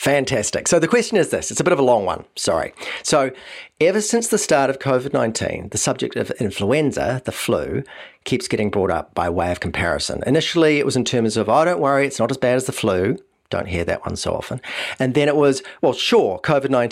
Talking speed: 225 wpm